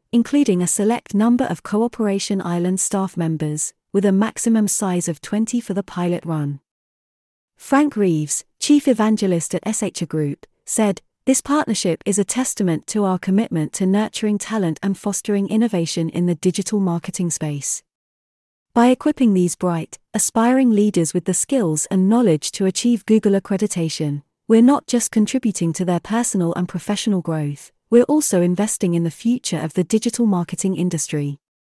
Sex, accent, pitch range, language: female, British, 170-225 Hz, English